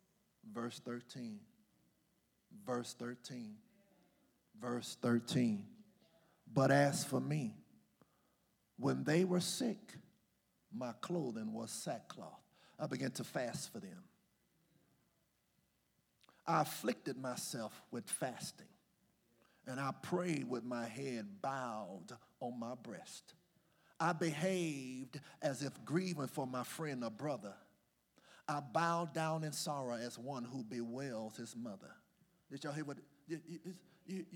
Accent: American